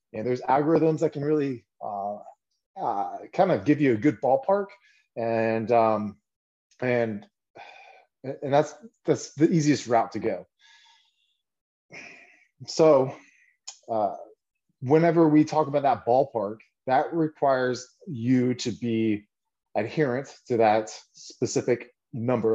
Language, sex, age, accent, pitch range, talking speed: English, male, 30-49, American, 105-145 Hz, 115 wpm